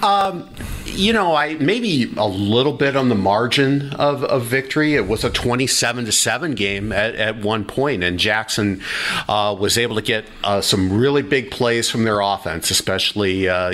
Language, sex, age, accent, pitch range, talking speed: English, male, 50-69, American, 95-115 Hz, 185 wpm